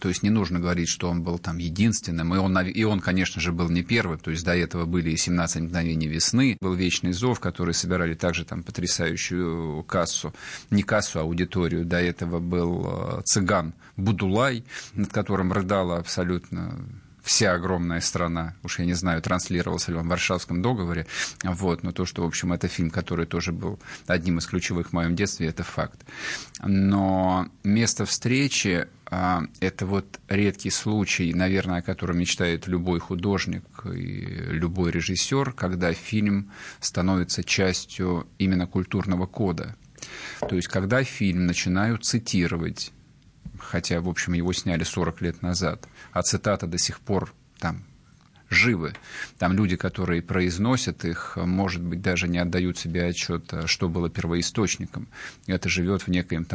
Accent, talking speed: native, 155 wpm